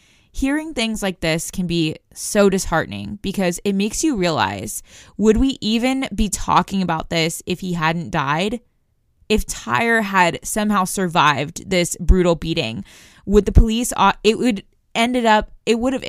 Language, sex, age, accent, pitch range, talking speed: English, female, 20-39, American, 170-215 Hz, 155 wpm